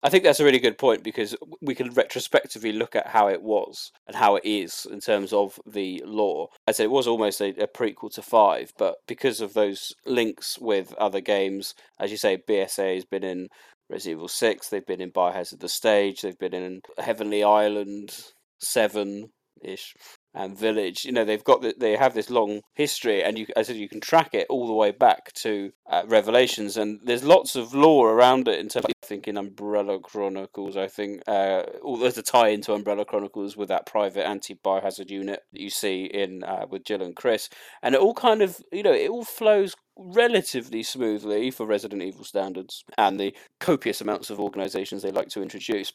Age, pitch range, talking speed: 30-49, 100-130 Hz, 200 wpm